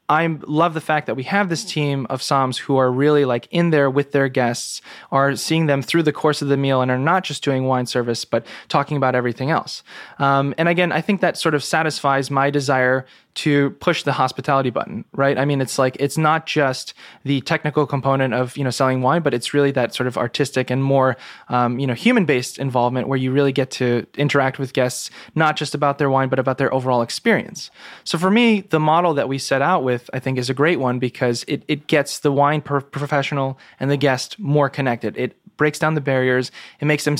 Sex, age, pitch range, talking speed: male, 20-39, 130-155 Hz, 225 wpm